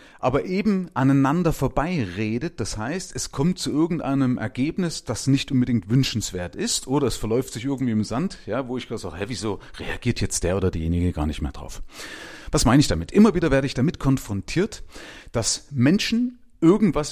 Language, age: German, 30-49